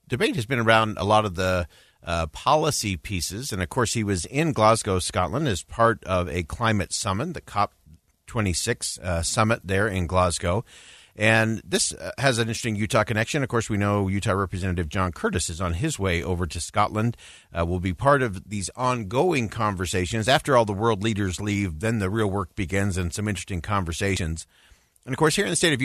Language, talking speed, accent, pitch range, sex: English, 200 wpm, American, 95-120 Hz, male